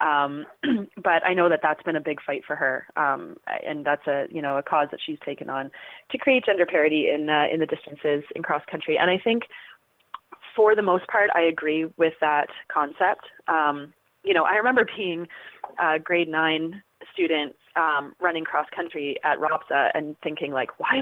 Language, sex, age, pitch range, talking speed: English, female, 20-39, 150-180 Hz, 195 wpm